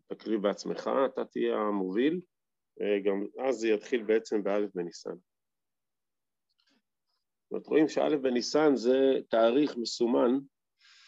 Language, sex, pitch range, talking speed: Hebrew, male, 100-135 Hz, 105 wpm